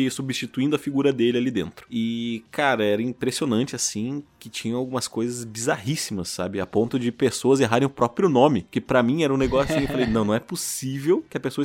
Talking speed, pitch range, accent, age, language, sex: 210 wpm, 110-165 Hz, Brazilian, 20-39, Portuguese, male